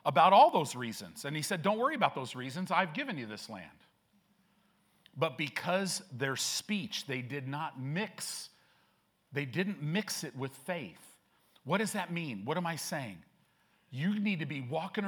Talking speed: 175 wpm